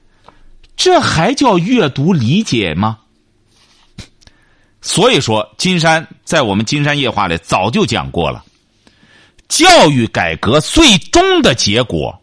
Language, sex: Chinese, male